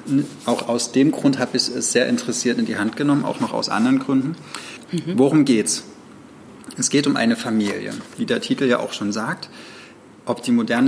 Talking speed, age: 195 wpm, 20-39